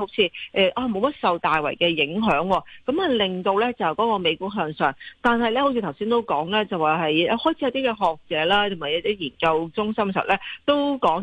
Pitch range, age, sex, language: 170-230 Hz, 40-59, female, Chinese